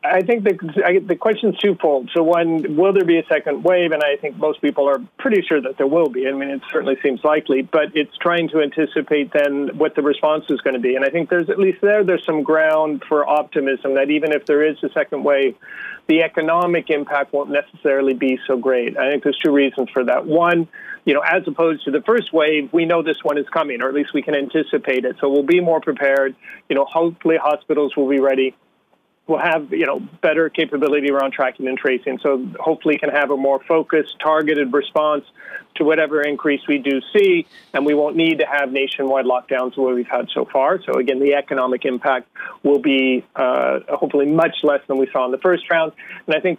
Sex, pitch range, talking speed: male, 140-165 Hz, 220 wpm